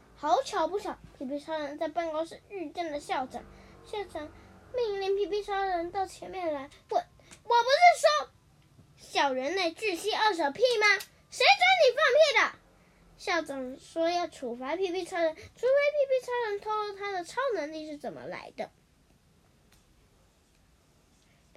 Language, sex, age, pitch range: Chinese, female, 10-29, 300-395 Hz